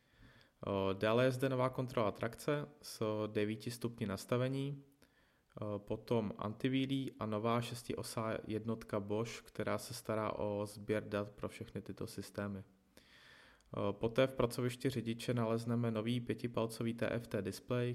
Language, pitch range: Czech, 105-115 Hz